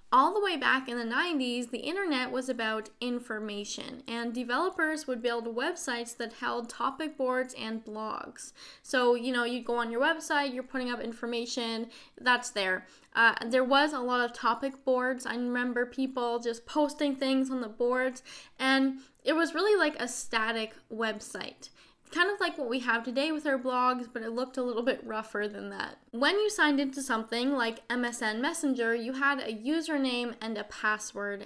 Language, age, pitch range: English, 10-29, 230-270 Hz